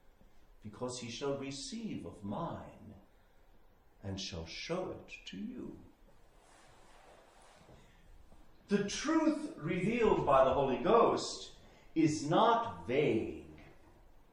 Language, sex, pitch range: English, male, 145-240 Hz